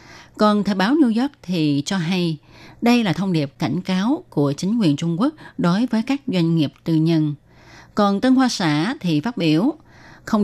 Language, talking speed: Vietnamese, 195 wpm